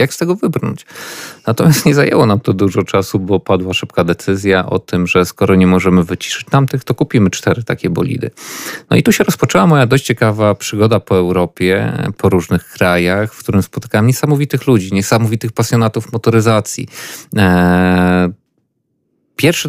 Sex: male